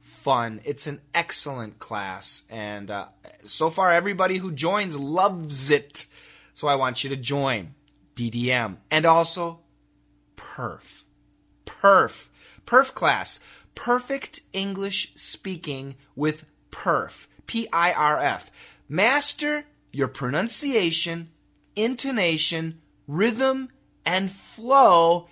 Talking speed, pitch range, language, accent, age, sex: 95 wpm, 130-180 Hz, English, American, 30-49, male